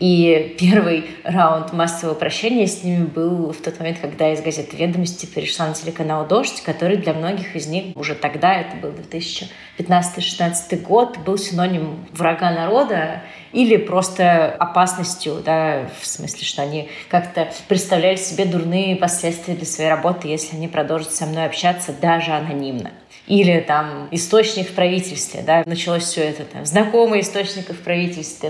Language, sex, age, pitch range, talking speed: Russian, female, 20-39, 160-190 Hz, 150 wpm